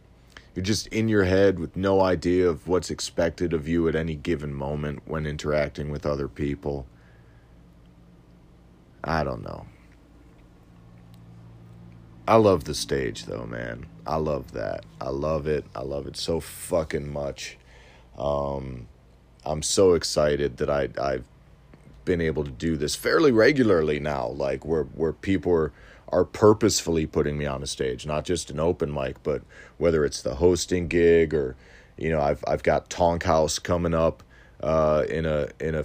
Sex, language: male, English